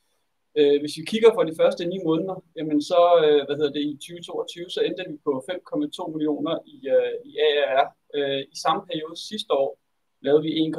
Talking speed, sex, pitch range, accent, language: 180 wpm, male, 145-205 Hz, native, Danish